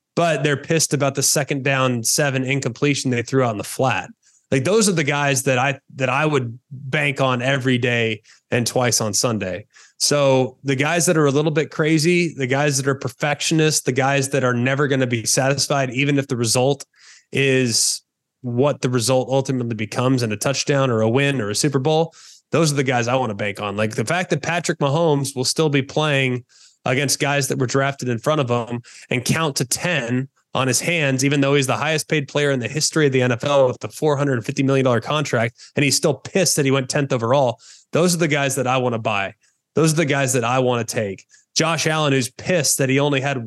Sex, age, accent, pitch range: male, 20-39, American, 125-145 Hz